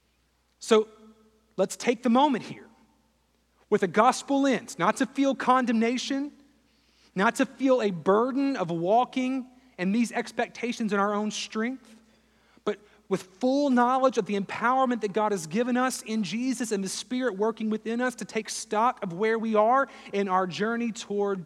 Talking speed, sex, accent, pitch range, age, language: 165 wpm, male, American, 180-230 Hz, 30-49, English